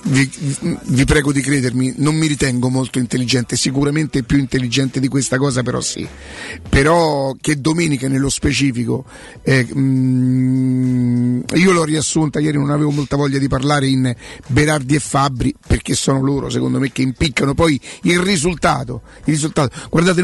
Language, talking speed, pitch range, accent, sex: Italian, 155 wpm, 135-160 Hz, native, male